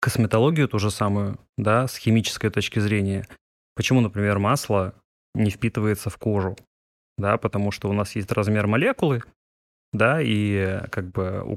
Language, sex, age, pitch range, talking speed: Russian, male, 20-39, 100-120 Hz, 150 wpm